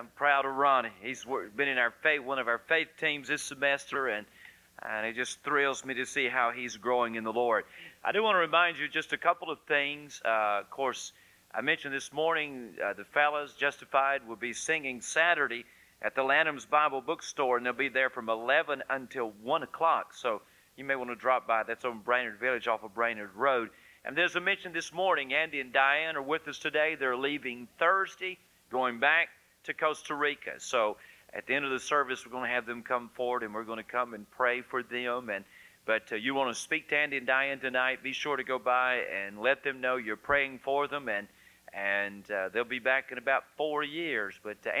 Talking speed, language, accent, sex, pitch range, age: 220 wpm, English, American, male, 120-145 Hz, 40-59